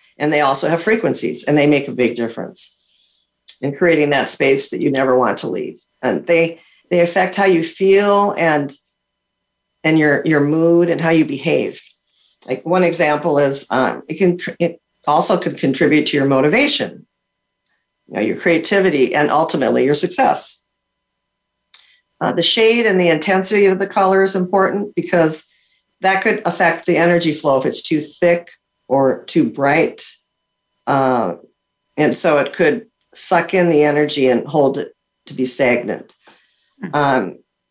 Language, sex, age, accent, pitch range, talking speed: English, female, 50-69, American, 145-180 Hz, 160 wpm